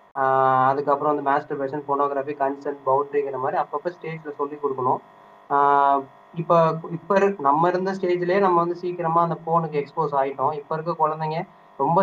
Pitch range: 145-185 Hz